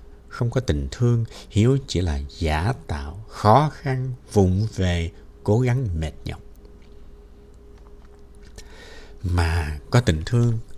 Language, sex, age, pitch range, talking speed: Vietnamese, male, 60-79, 80-120 Hz, 115 wpm